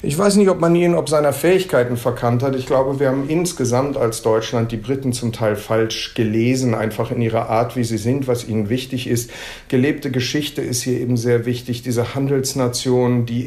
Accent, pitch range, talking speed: German, 115-135 Hz, 200 wpm